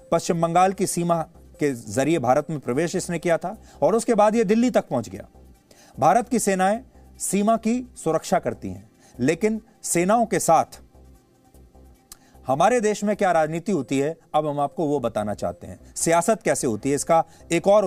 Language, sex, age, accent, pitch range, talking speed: English, male, 30-49, Indian, 145-205 Hz, 180 wpm